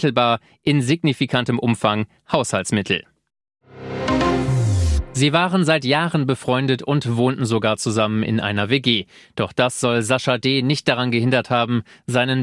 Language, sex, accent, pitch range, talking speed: German, male, German, 115-135 Hz, 125 wpm